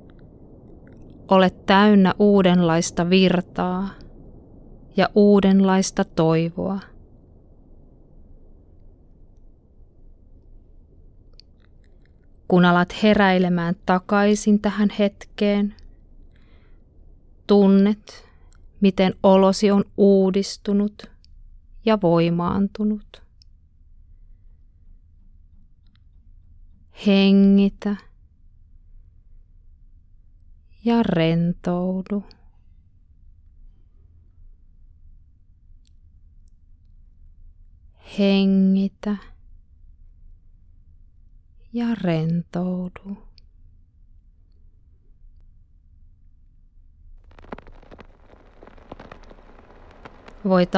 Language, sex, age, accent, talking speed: Finnish, female, 20-39, native, 30 wpm